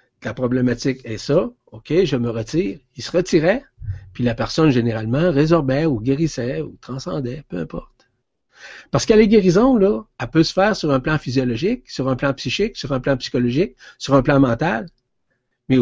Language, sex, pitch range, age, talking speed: French, male, 125-175 Hz, 60-79, 180 wpm